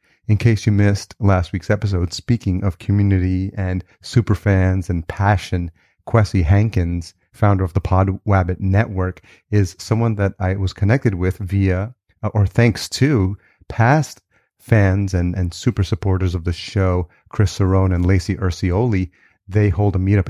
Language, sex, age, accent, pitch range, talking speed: English, male, 30-49, American, 90-100 Hz, 150 wpm